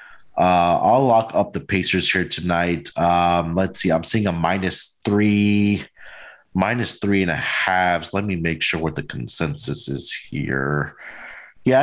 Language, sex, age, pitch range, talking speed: English, male, 30-49, 90-130 Hz, 160 wpm